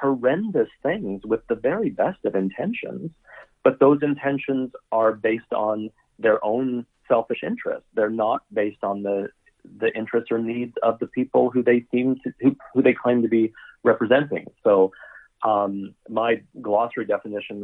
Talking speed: 155 wpm